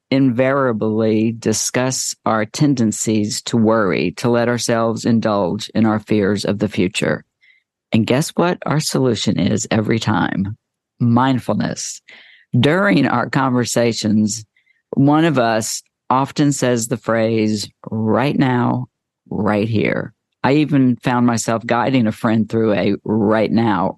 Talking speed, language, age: 125 wpm, English, 50-69